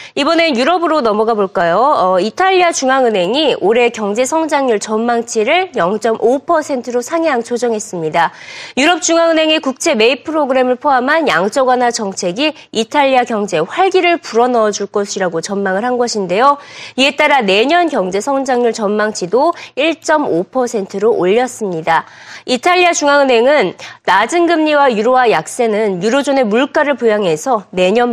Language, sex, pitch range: Korean, female, 205-290 Hz